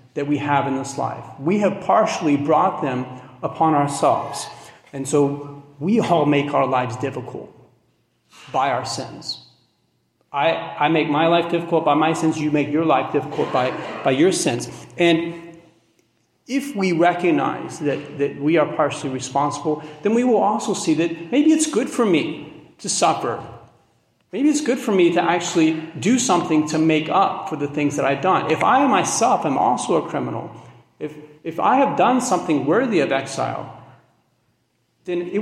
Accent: American